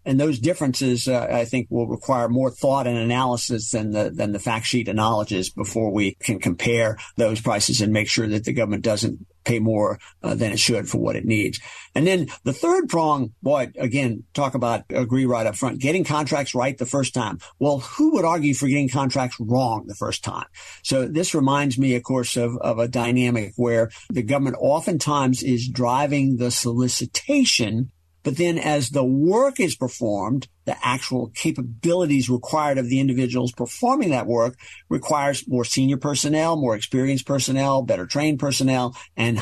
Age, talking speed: 50-69, 180 wpm